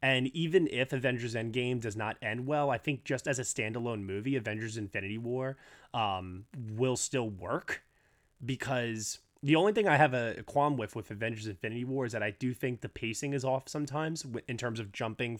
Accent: American